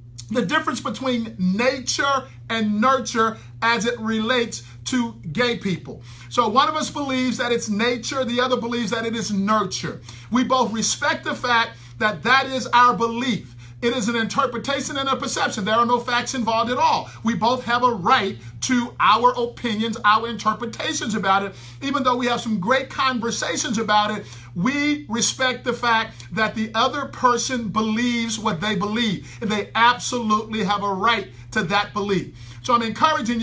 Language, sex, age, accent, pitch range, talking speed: English, male, 50-69, American, 215-255 Hz, 170 wpm